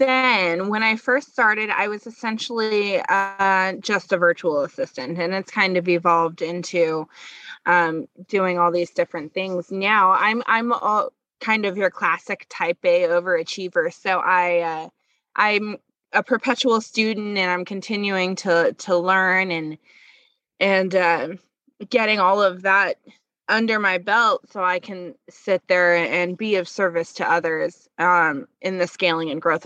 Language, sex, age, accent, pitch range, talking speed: English, female, 20-39, American, 175-220 Hz, 155 wpm